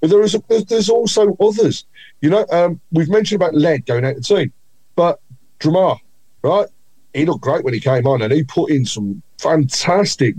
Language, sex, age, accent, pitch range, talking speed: English, male, 40-59, British, 110-155 Hz, 185 wpm